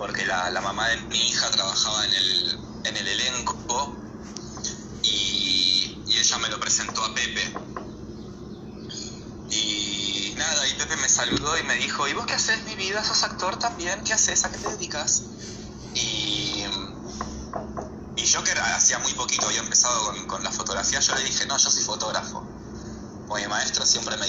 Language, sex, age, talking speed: Spanish, male, 20-39, 170 wpm